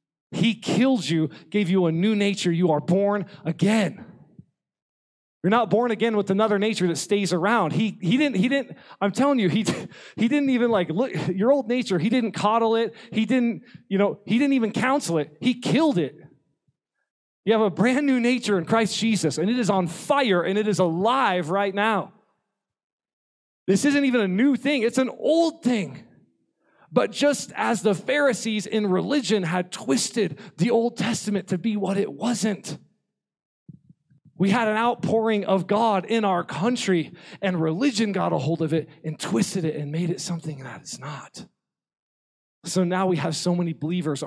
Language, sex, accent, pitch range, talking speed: English, male, American, 165-225 Hz, 185 wpm